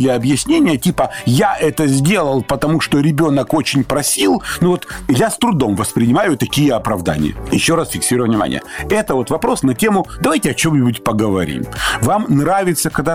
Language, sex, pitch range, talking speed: Russian, male, 120-175 Hz, 160 wpm